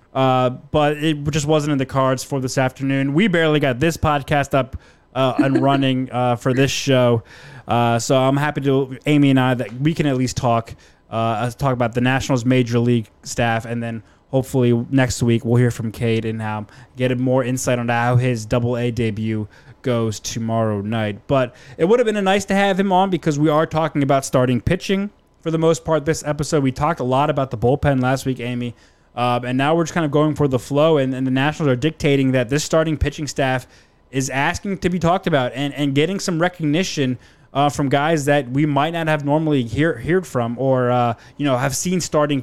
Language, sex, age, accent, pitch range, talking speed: English, male, 20-39, American, 125-150 Hz, 220 wpm